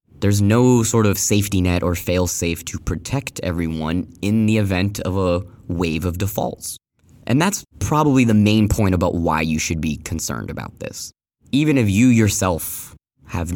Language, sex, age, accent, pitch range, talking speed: English, male, 20-39, American, 90-115 Hz, 170 wpm